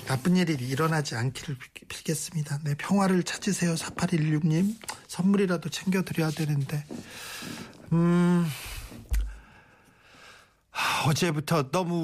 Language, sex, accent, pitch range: Korean, male, native, 145-175 Hz